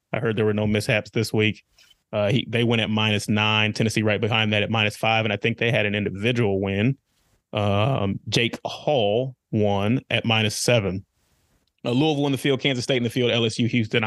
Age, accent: 30-49, American